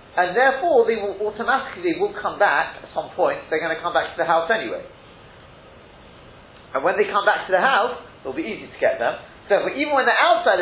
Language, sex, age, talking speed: English, male, 40-59, 225 wpm